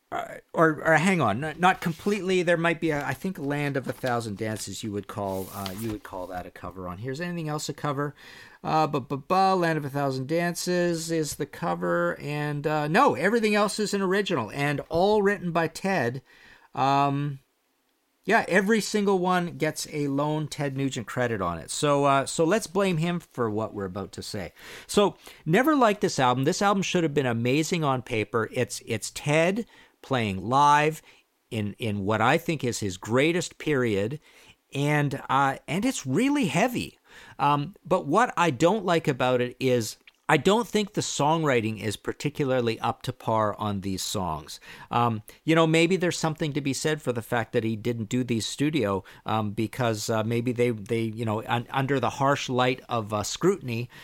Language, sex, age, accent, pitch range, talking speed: English, male, 50-69, American, 115-170 Hz, 190 wpm